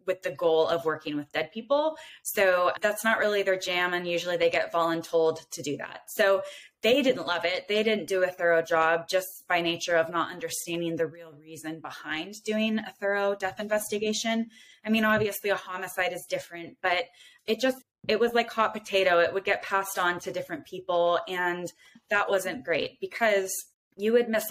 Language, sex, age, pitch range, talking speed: English, female, 20-39, 165-205 Hz, 195 wpm